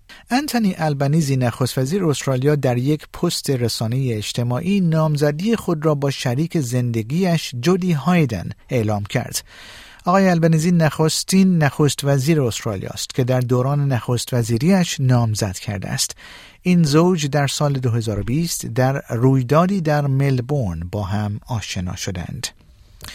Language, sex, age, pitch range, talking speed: Persian, male, 50-69, 120-155 Hz, 125 wpm